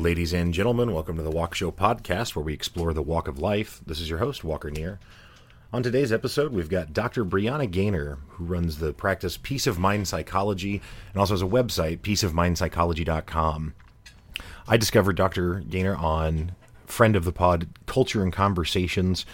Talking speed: 175 wpm